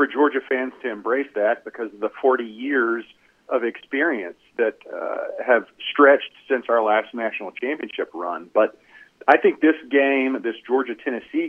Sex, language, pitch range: male, English, 120-150 Hz